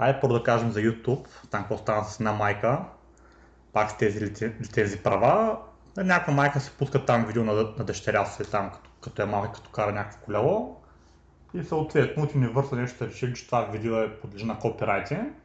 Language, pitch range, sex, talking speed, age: Bulgarian, 105-125 Hz, male, 185 wpm, 30-49